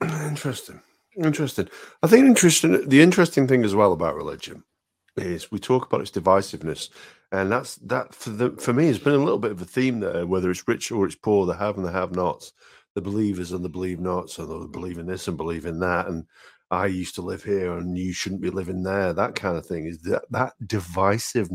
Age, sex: 50-69, male